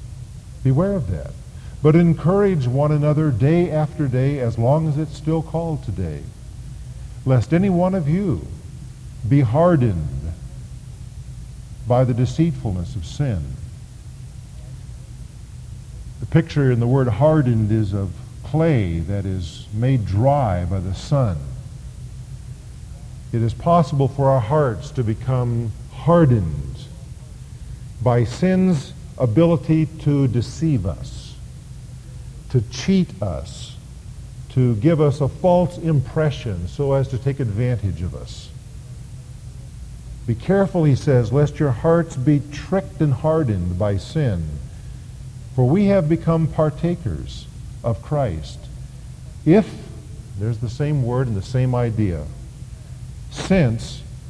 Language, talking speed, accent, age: English, 115 wpm, American, 50-69